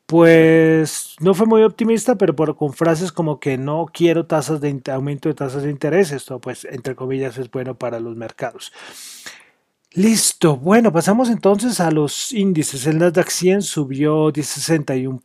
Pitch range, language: 140-175 Hz, Spanish